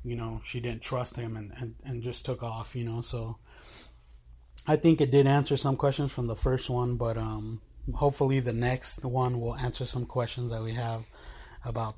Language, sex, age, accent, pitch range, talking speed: English, male, 20-39, American, 115-130 Hz, 200 wpm